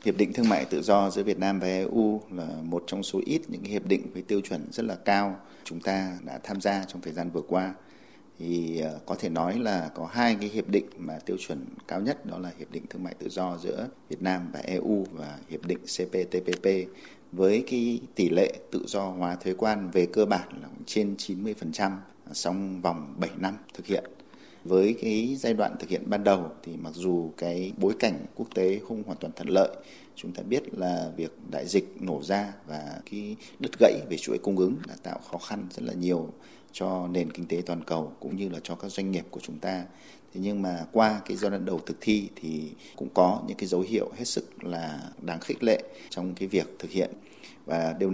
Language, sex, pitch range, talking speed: Vietnamese, male, 85-100 Hz, 225 wpm